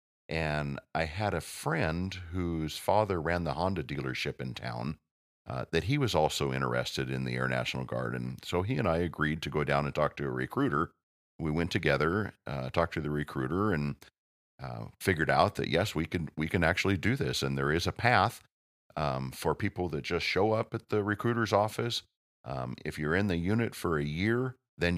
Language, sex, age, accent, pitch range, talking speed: English, male, 50-69, American, 70-100 Hz, 205 wpm